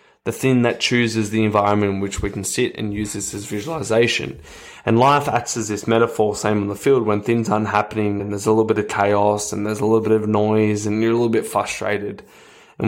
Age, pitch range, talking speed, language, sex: 20-39, 105-120 Hz, 240 wpm, English, male